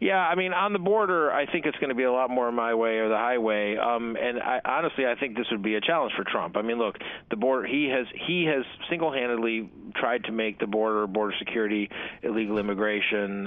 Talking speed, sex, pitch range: 230 wpm, male, 105-120 Hz